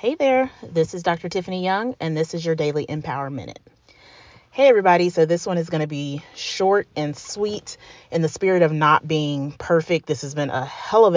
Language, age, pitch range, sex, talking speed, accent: English, 30-49, 145-170 Hz, female, 210 wpm, American